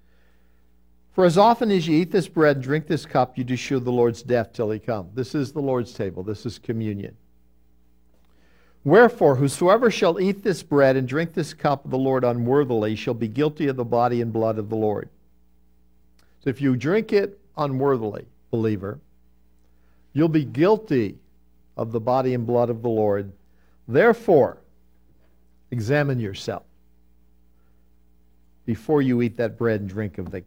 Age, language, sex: 60-79, English, male